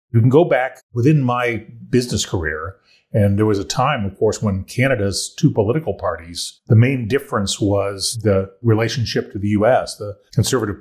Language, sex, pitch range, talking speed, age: English, male, 100-120 Hz, 170 wpm, 40-59